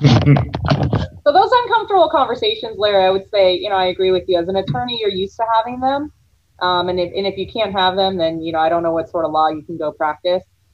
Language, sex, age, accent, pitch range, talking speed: English, female, 30-49, American, 180-245 Hz, 250 wpm